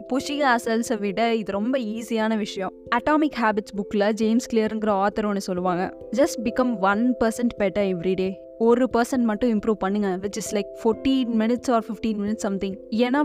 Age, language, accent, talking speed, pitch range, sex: 20-39, Tamil, native, 100 wpm, 205-245 Hz, female